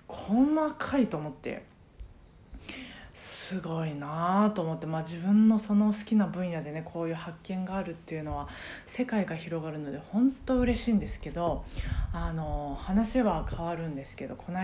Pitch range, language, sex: 155-215 Hz, Japanese, female